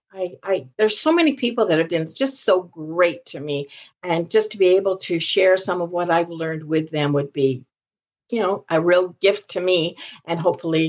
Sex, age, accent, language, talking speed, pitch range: female, 50-69, American, English, 215 wpm, 150-225 Hz